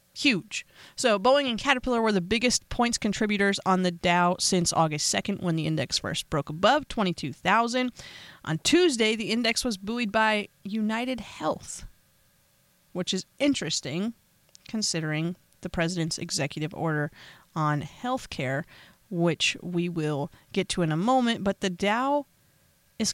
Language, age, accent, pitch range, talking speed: English, 30-49, American, 170-230 Hz, 145 wpm